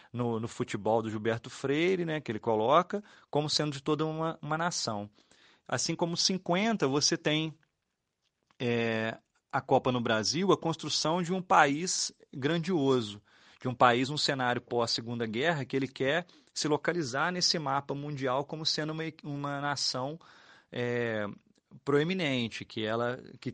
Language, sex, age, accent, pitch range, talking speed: Portuguese, male, 30-49, Brazilian, 115-155 Hz, 140 wpm